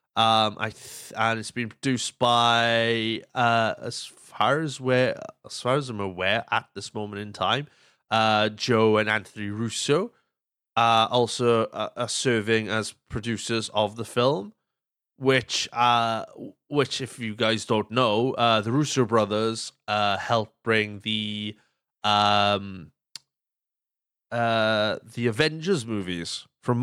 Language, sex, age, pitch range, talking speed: English, male, 30-49, 105-125 Hz, 135 wpm